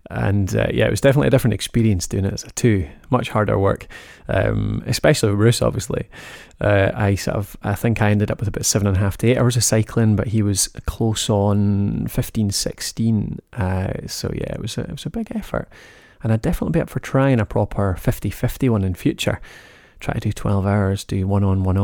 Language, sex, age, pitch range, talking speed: English, male, 20-39, 100-125 Hz, 230 wpm